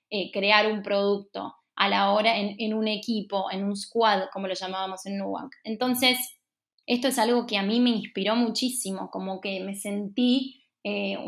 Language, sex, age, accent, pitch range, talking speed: Spanish, female, 20-39, Argentinian, 200-240 Hz, 180 wpm